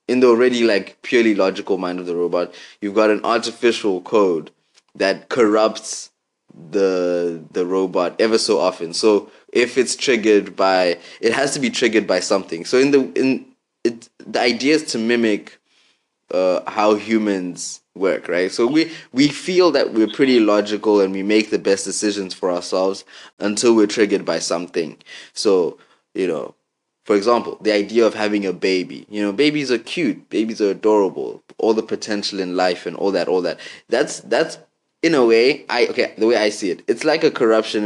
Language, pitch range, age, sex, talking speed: English, 95-120 Hz, 20-39, male, 185 wpm